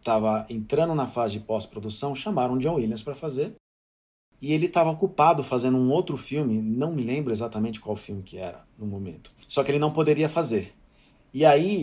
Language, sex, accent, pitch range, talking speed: Portuguese, male, Brazilian, 115-155 Hz, 195 wpm